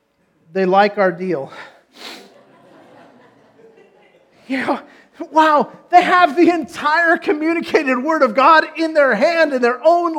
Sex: male